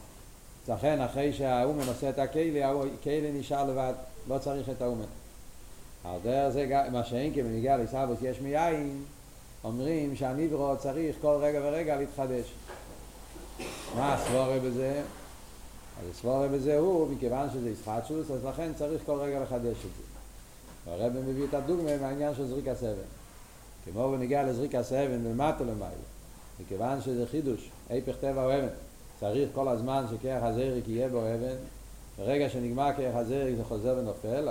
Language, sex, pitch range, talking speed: Hebrew, male, 115-140 Hz, 145 wpm